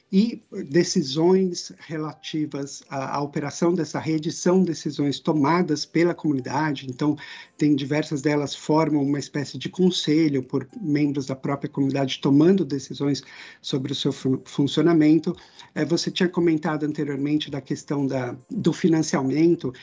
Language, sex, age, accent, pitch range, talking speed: Portuguese, male, 50-69, Brazilian, 145-175 Hz, 135 wpm